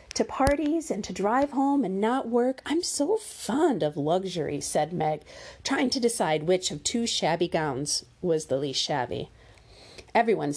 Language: English